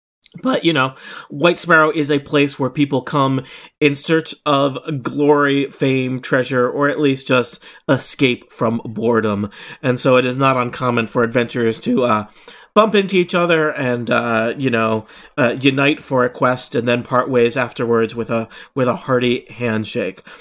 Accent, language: American, English